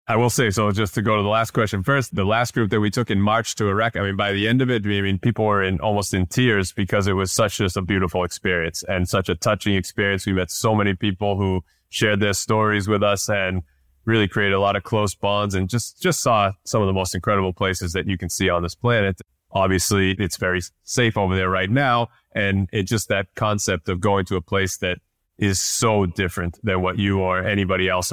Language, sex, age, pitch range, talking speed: English, male, 20-39, 95-110 Hz, 245 wpm